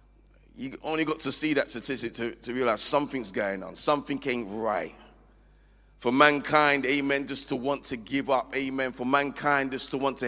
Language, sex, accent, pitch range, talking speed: English, male, British, 130-150 Hz, 185 wpm